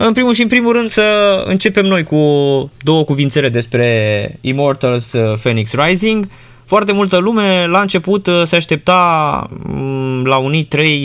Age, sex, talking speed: 20-39, male, 140 wpm